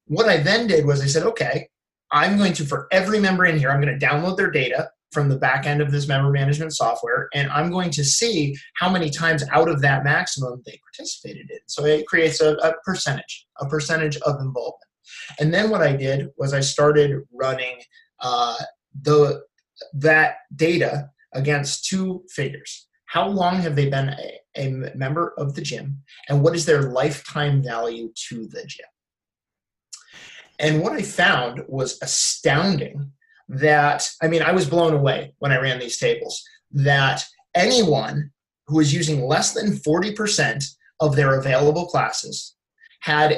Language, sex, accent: English, male, American